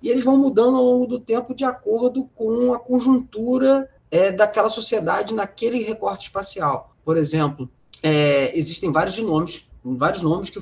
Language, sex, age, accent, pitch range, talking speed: Portuguese, male, 20-39, Brazilian, 150-235 Hz, 145 wpm